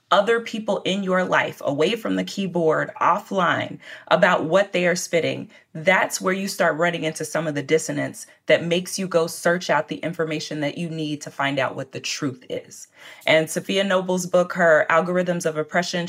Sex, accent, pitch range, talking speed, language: female, American, 160-190 Hz, 190 wpm, English